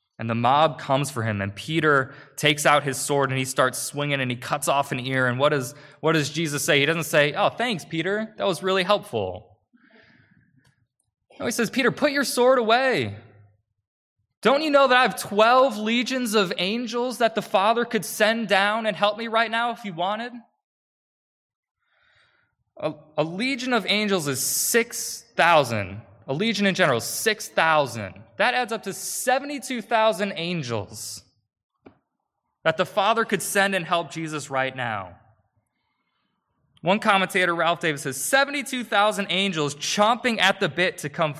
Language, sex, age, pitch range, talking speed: English, male, 20-39, 135-220 Hz, 160 wpm